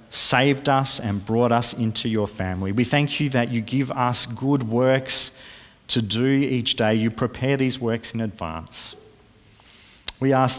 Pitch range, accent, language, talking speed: 95-120 Hz, Australian, English, 165 wpm